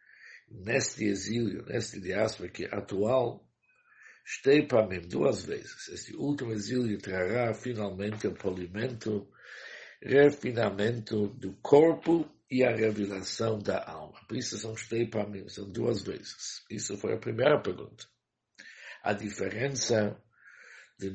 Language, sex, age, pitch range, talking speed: English, male, 60-79, 105-125 Hz, 100 wpm